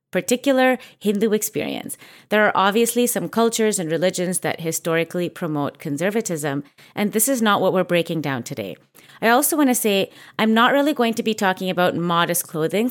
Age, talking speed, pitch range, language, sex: 30-49, 175 wpm, 170-220 Hz, English, female